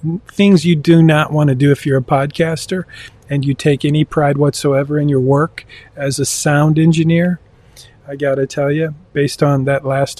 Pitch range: 130-150 Hz